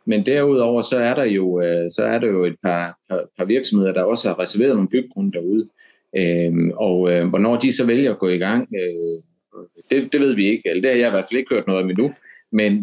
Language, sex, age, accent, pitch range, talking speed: Danish, male, 30-49, native, 90-115 Hz, 250 wpm